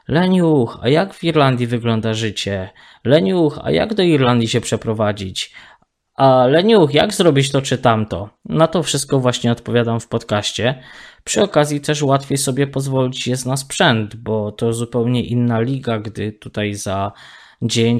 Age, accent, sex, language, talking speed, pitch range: 20-39, native, male, Polish, 155 wpm, 110-135 Hz